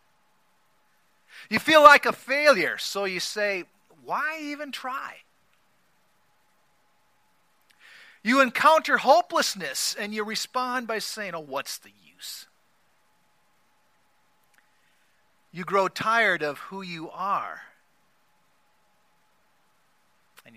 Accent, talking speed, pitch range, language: American, 90 wpm, 155-215 Hz, English